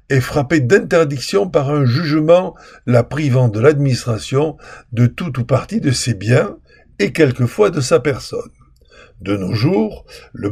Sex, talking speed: male, 150 wpm